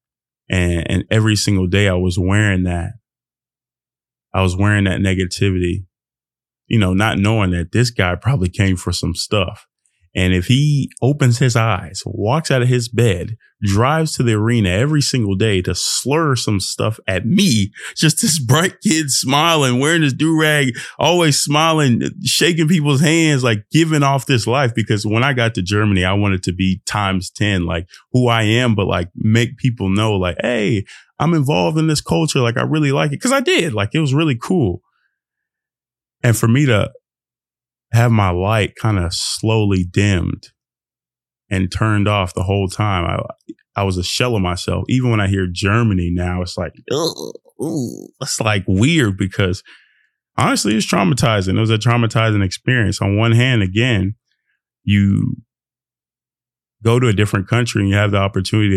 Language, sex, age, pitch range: English, male, 20-39, 95-125 Hz